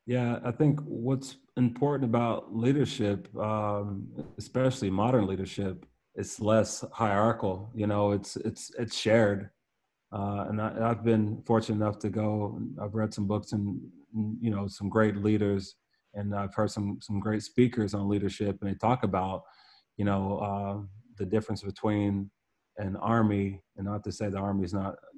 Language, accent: English, American